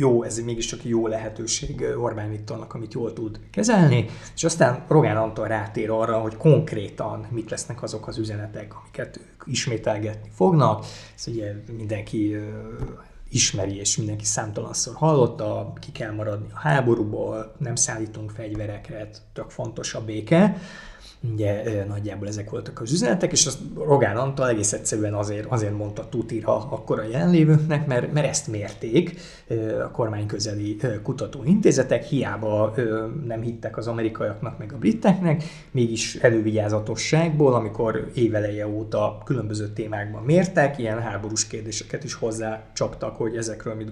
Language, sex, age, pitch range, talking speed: Hungarian, male, 20-39, 110-135 Hz, 130 wpm